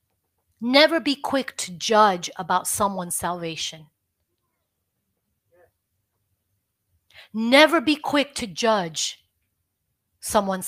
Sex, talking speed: female, 80 wpm